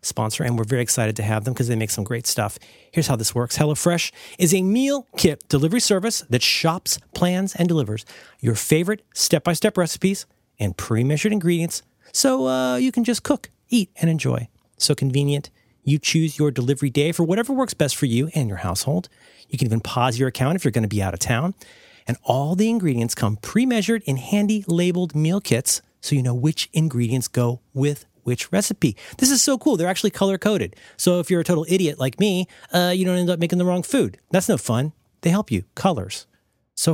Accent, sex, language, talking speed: American, male, English, 210 wpm